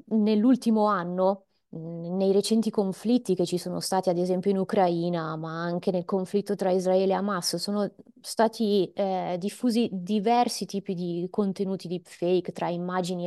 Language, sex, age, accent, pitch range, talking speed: Italian, female, 20-39, native, 185-230 Hz, 145 wpm